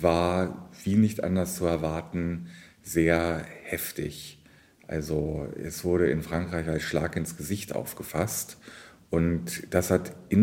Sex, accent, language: male, German, German